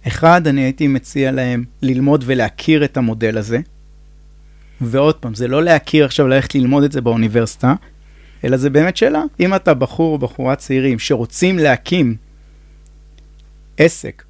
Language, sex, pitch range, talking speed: Hebrew, male, 125-165 Hz, 145 wpm